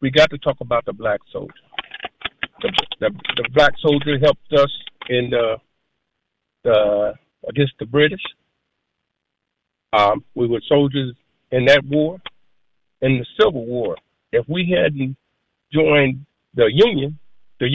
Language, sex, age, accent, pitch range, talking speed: English, male, 50-69, American, 135-165 Hz, 130 wpm